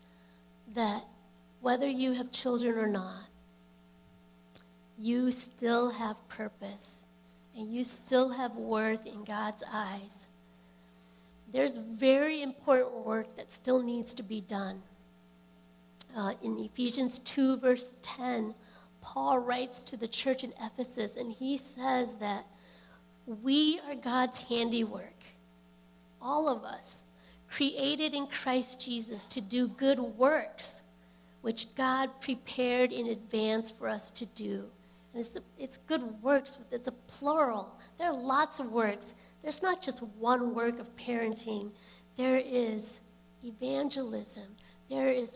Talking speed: 125 wpm